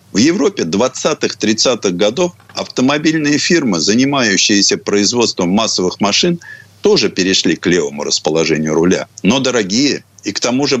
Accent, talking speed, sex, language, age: native, 120 wpm, male, Russian, 50-69